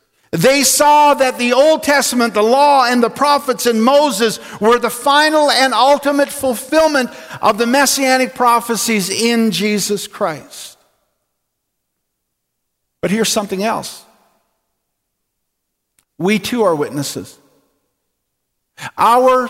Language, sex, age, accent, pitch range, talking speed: English, male, 50-69, American, 215-270 Hz, 110 wpm